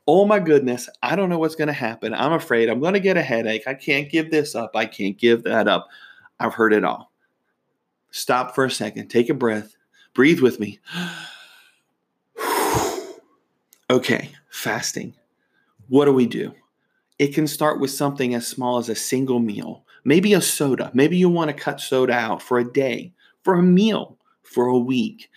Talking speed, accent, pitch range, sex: 185 wpm, American, 120-155 Hz, male